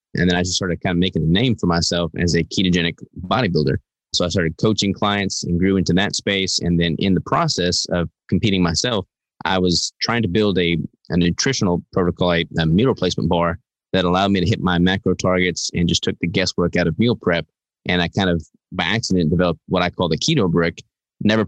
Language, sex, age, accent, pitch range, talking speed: English, male, 20-39, American, 85-100 Hz, 220 wpm